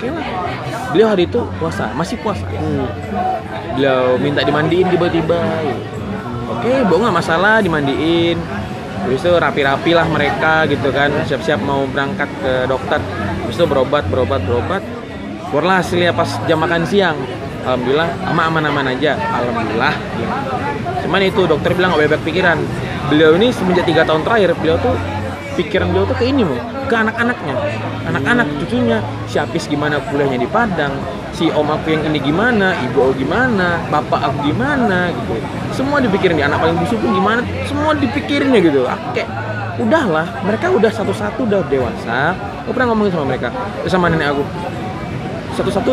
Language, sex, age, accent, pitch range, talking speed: Indonesian, male, 20-39, native, 140-175 Hz, 145 wpm